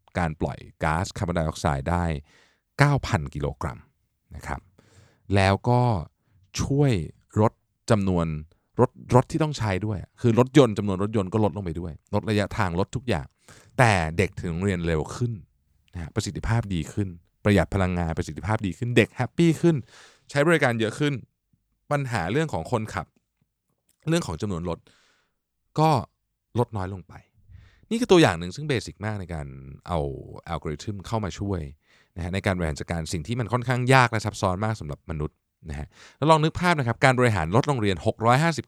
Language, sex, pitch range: Thai, male, 85-120 Hz